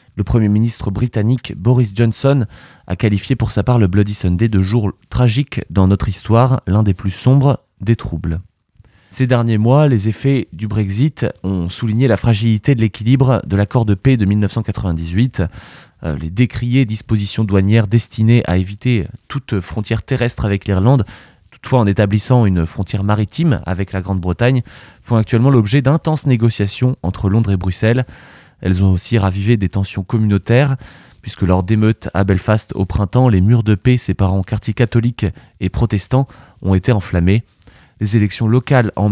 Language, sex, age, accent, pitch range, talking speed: French, male, 20-39, French, 100-120 Hz, 165 wpm